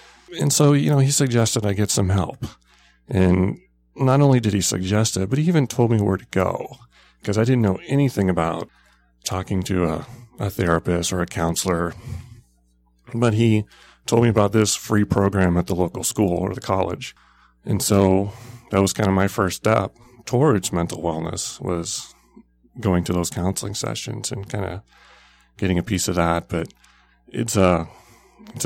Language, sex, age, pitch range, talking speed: English, male, 30-49, 90-115 Hz, 175 wpm